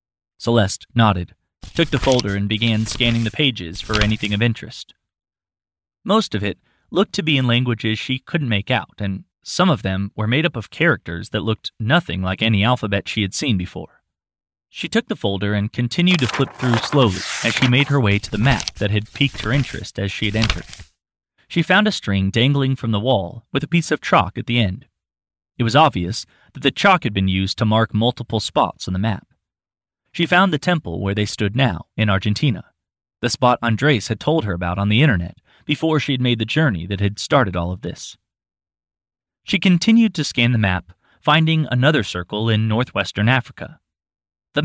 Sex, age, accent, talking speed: male, 20-39, American, 200 wpm